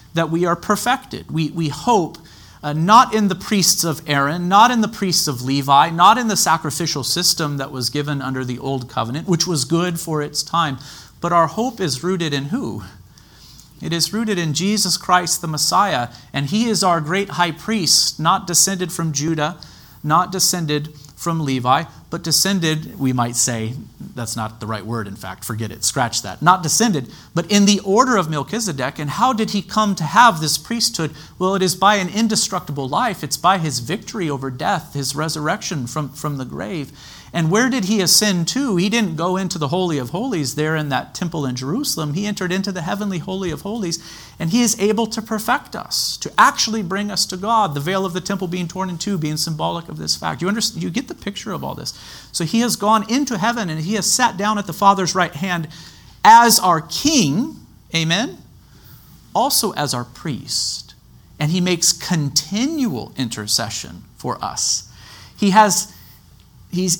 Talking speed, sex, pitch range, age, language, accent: 195 wpm, male, 145-200 Hz, 40-59, English, American